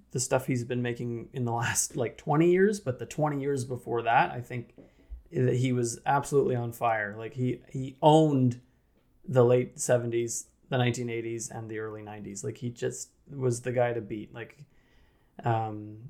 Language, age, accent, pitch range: English, 20-39, American, 115-130 Hz